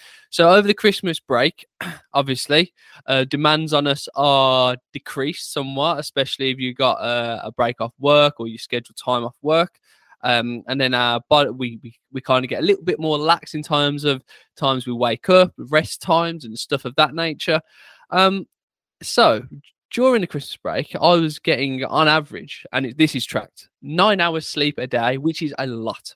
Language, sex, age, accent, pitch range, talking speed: English, male, 10-29, British, 130-165 Hz, 180 wpm